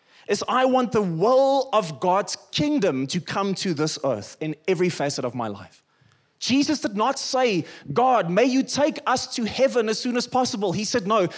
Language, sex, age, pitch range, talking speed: English, male, 20-39, 165-250 Hz, 195 wpm